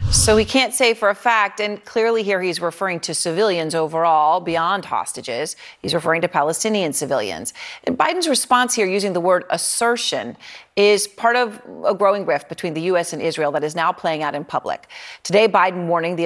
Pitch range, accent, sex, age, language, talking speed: 170-210 Hz, American, female, 40-59, English, 190 wpm